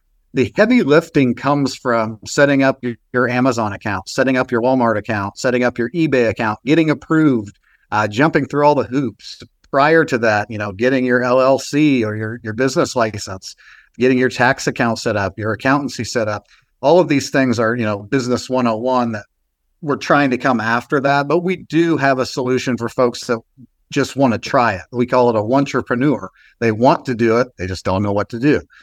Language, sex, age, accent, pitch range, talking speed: English, male, 50-69, American, 115-140 Hz, 210 wpm